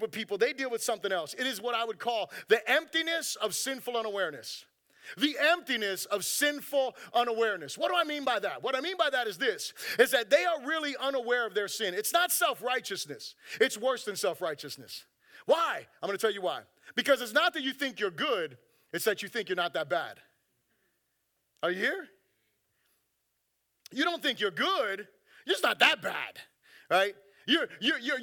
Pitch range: 210-300 Hz